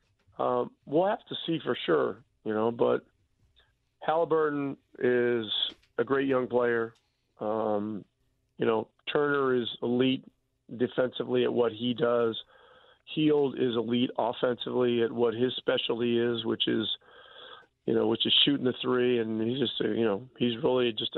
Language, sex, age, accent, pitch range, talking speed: English, male, 40-59, American, 115-130 Hz, 150 wpm